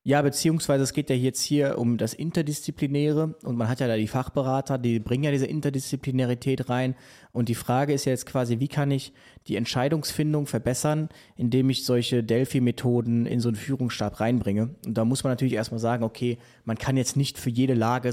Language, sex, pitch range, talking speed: German, male, 115-140 Hz, 200 wpm